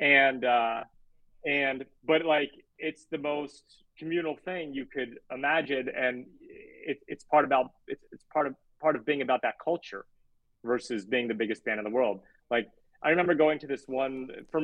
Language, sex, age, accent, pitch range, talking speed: English, male, 30-49, American, 130-170 Hz, 180 wpm